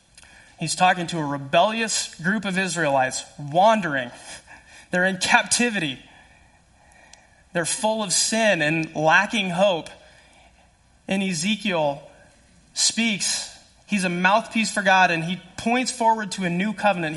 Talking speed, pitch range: 120 wpm, 145-195 Hz